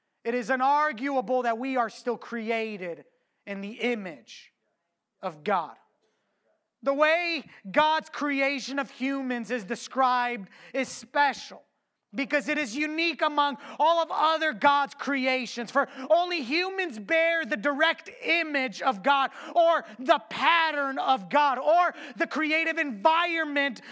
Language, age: English, 30-49